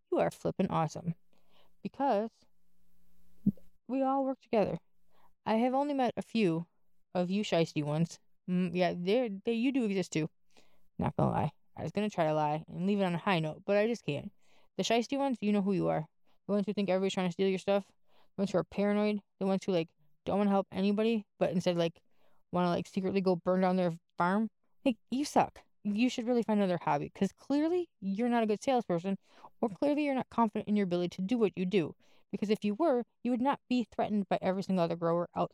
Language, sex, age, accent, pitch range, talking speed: English, female, 20-39, American, 170-215 Hz, 230 wpm